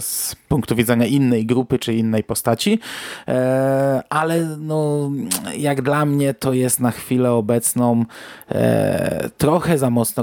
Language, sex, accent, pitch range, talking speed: Polish, male, native, 115-145 Hz, 125 wpm